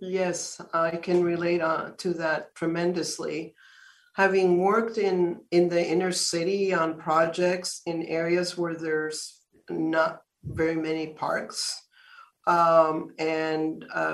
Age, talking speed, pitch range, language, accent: 50-69, 110 wpm, 160-185 Hz, English, American